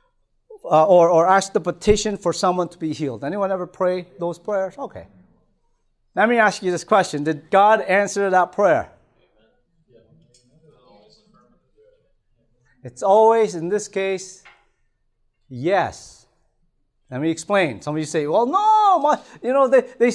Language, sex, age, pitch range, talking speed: English, male, 30-49, 155-225 Hz, 145 wpm